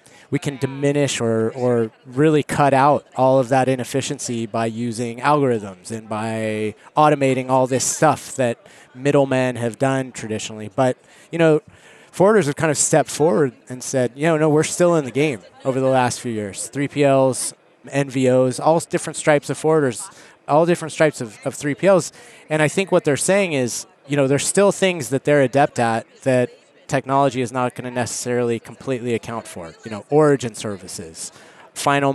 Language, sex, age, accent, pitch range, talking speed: English, male, 30-49, American, 120-150 Hz, 175 wpm